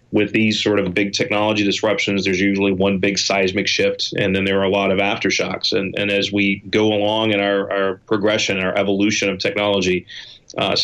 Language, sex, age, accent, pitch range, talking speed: English, male, 30-49, American, 95-105 Hz, 200 wpm